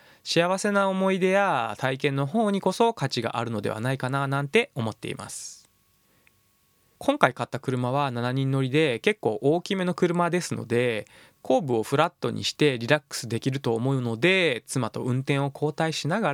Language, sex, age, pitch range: Japanese, male, 20-39, 120-180 Hz